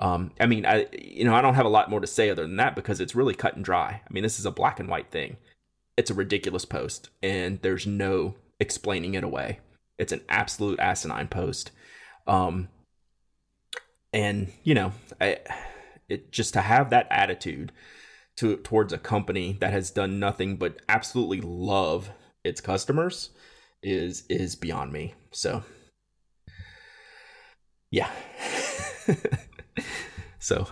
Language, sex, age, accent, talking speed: English, male, 30-49, American, 155 wpm